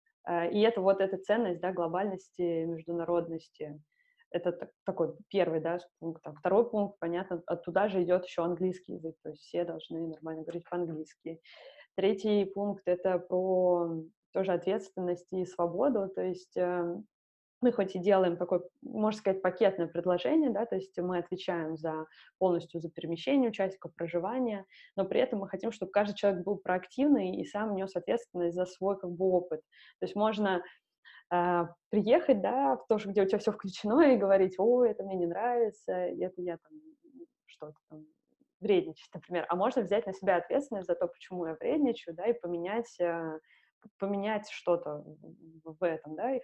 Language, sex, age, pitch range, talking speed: Russian, female, 20-39, 175-210 Hz, 160 wpm